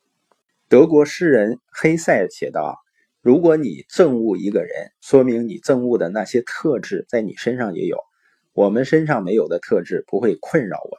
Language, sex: Chinese, male